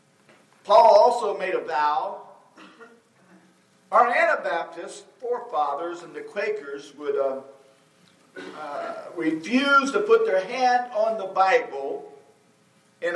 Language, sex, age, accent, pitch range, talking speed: English, male, 50-69, American, 175-245 Hz, 105 wpm